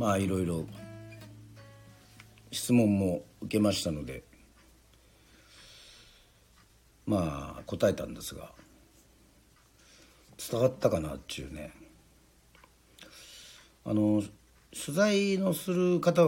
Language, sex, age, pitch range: Japanese, male, 50-69, 95-145 Hz